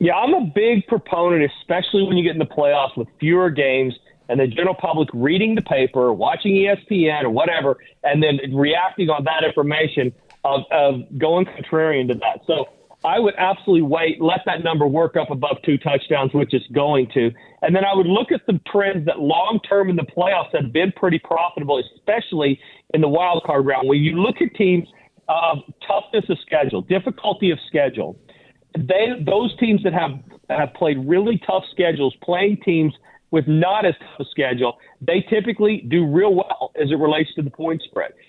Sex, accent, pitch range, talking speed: male, American, 145-190 Hz, 190 wpm